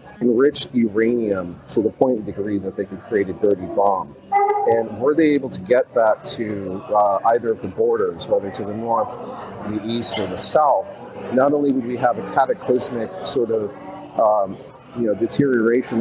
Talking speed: 185 wpm